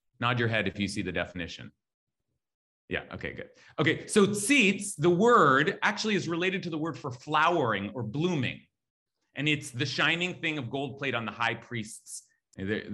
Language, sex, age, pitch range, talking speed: English, male, 30-49, 115-175 Hz, 180 wpm